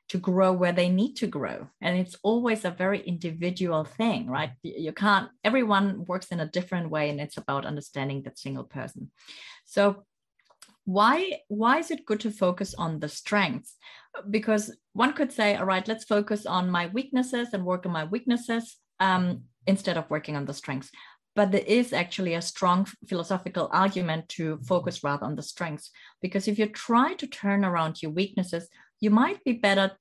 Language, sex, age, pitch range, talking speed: English, female, 30-49, 175-215 Hz, 180 wpm